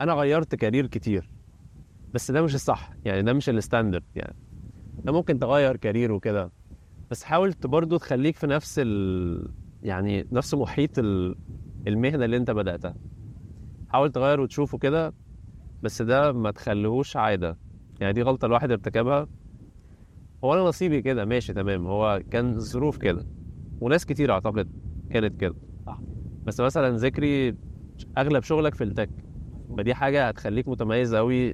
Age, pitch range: 20-39, 100-130 Hz